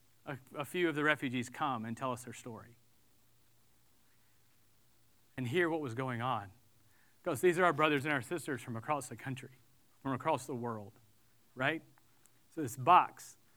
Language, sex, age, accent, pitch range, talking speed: English, male, 40-59, American, 115-165 Hz, 165 wpm